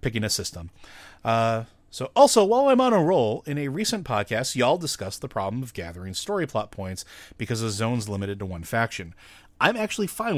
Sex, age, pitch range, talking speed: male, 30-49, 95-115 Hz, 195 wpm